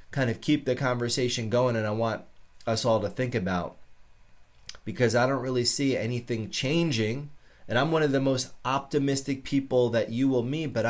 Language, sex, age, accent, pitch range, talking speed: English, male, 30-49, American, 110-140 Hz, 185 wpm